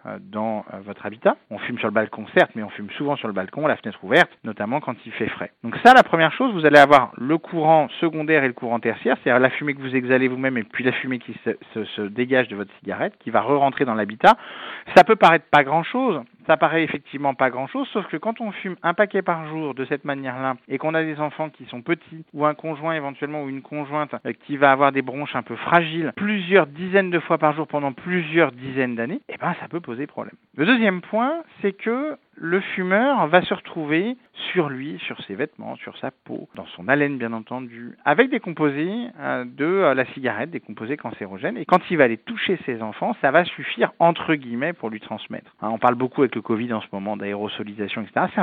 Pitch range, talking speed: 125-170 Hz, 230 wpm